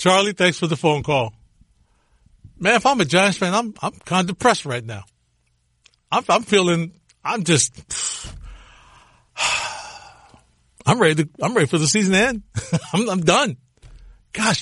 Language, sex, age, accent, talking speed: English, male, 60-79, American, 150 wpm